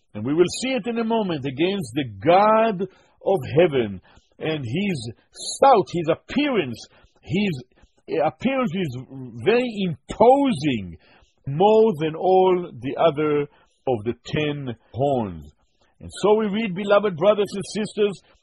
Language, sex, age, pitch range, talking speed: English, male, 50-69, 160-200 Hz, 130 wpm